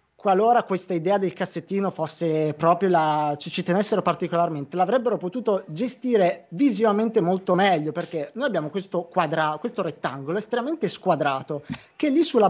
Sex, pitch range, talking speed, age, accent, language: male, 160-210 Hz, 145 wpm, 20-39, native, Italian